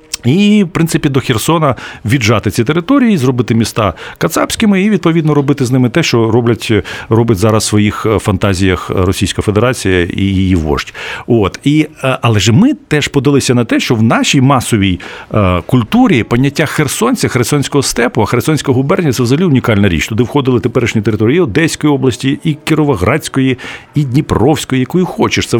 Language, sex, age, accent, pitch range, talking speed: Ukrainian, male, 50-69, native, 105-140 Hz, 155 wpm